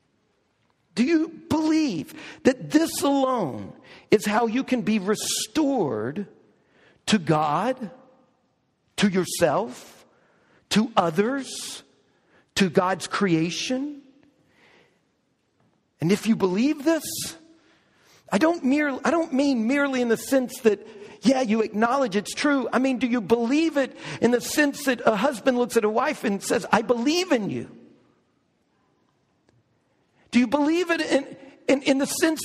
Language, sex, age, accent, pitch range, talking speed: English, male, 50-69, American, 225-295 Hz, 130 wpm